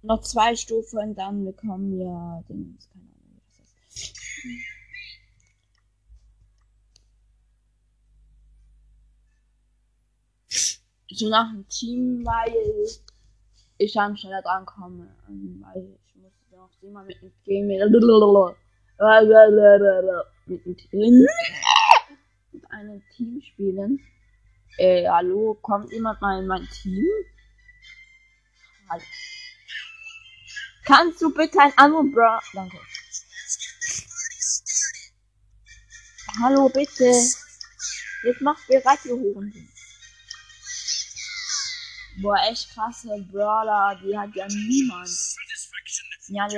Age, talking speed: 20-39, 90 wpm